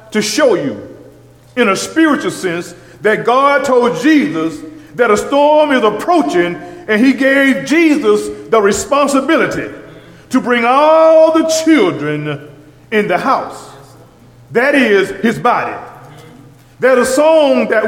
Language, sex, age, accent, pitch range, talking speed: English, male, 40-59, American, 180-280 Hz, 130 wpm